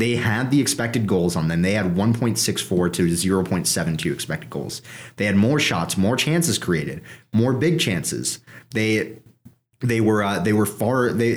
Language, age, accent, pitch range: English, 30-49, American, 90-120 Hz